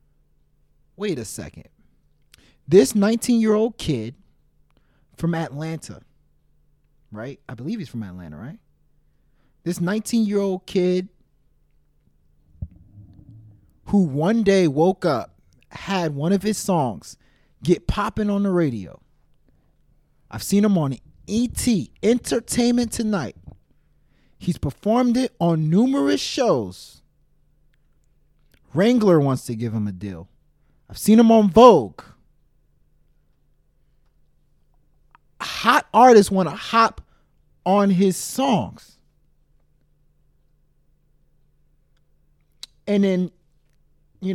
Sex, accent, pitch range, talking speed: male, American, 135-205 Hz, 100 wpm